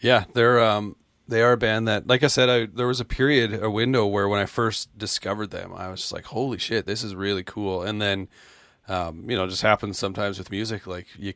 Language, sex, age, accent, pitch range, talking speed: English, male, 30-49, American, 95-125 Hz, 250 wpm